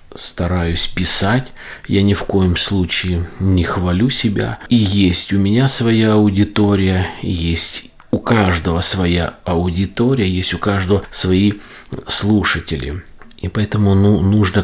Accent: native